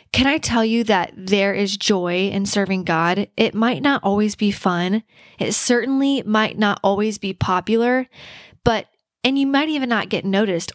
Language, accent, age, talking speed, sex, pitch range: English, American, 10-29, 180 wpm, female, 195-230 Hz